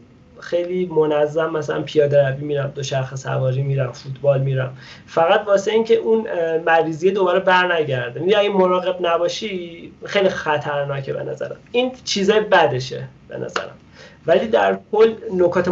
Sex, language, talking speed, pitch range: male, Persian, 135 wpm, 140-175 Hz